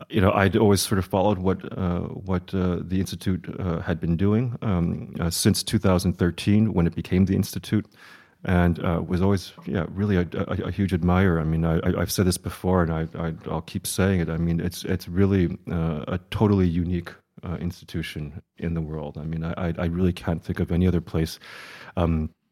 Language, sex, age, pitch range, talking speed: Dutch, male, 30-49, 85-95 Hz, 210 wpm